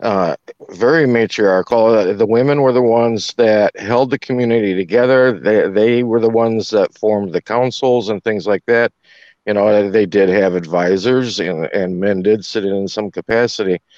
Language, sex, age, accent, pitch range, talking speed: English, male, 50-69, American, 105-130 Hz, 170 wpm